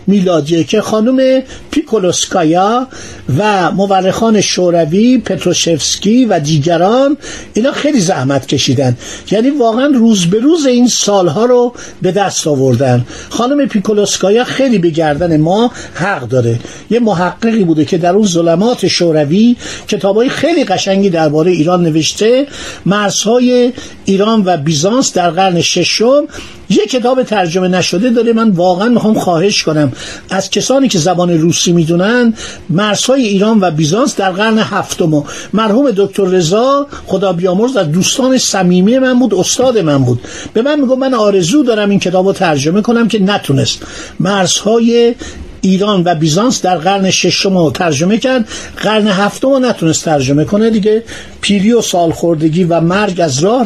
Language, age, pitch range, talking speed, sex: Persian, 50-69, 175-235 Hz, 145 wpm, male